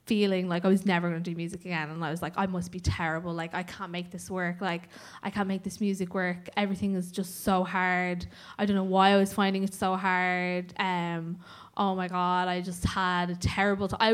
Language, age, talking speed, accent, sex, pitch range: English, 10-29, 240 wpm, Irish, female, 185-215 Hz